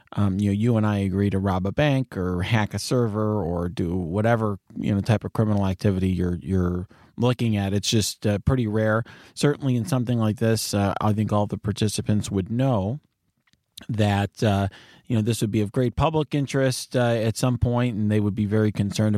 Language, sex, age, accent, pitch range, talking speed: English, male, 30-49, American, 100-125 Hz, 210 wpm